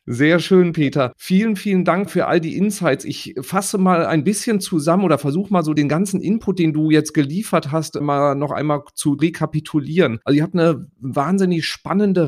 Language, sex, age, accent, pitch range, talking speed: German, male, 40-59, German, 125-165 Hz, 190 wpm